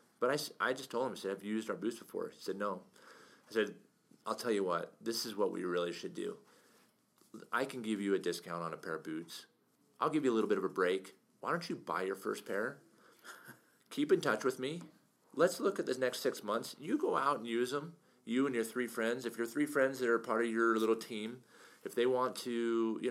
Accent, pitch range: American, 105-125 Hz